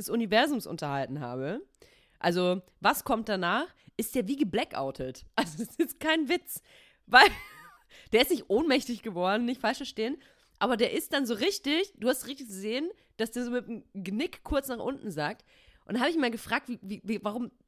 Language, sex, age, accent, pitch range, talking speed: German, female, 20-39, German, 180-255 Hz, 190 wpm